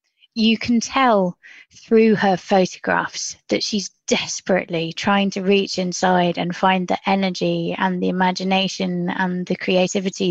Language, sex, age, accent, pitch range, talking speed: English, female, 20-39, British, 180-215 Hz, 135 wpm